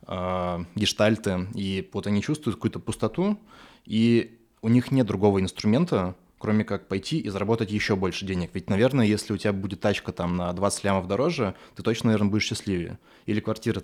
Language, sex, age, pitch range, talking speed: Russian, male, 20-39, 100-120 Hz, 175 wpm